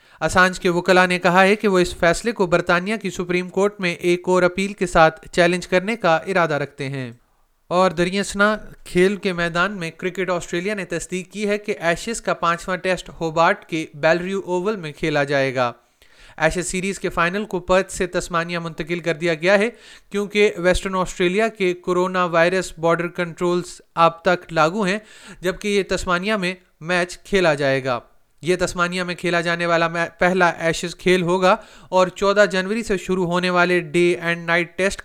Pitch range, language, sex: 170-195 Hz, Urdu, male